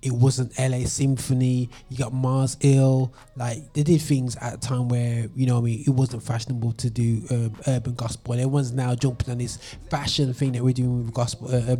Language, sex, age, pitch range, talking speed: English, male, 20-39, 120-135 Hz, 205 wpm